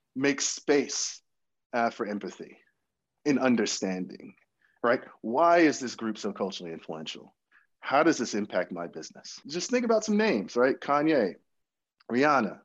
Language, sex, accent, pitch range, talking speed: English, male, American, 105-135 Hz, 140 wpm